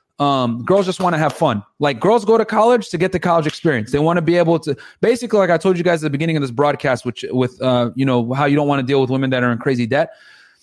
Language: English